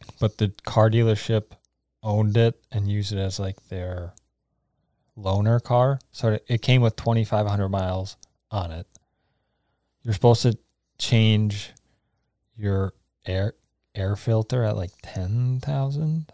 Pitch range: 100-125 Hz